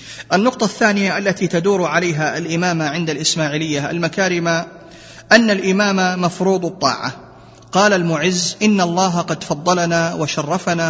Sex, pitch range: male, 150-180 Hz